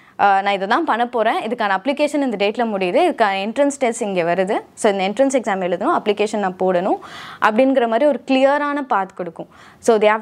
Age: 20-39